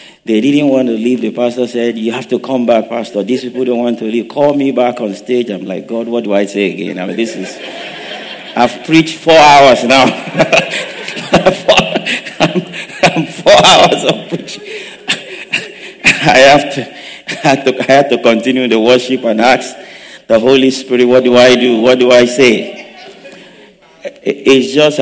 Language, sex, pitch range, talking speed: English, male, 100-125 Hz, 160 wpm